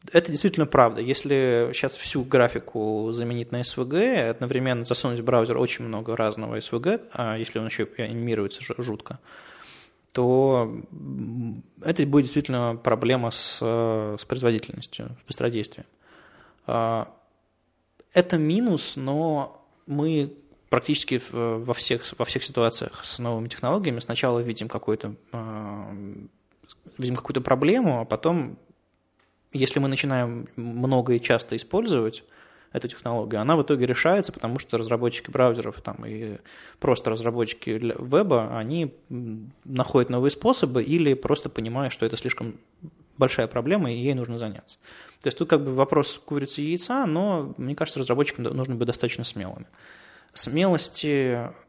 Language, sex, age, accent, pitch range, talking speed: Russian, male, 20-39, native, 115-145 Hz, 125 wpm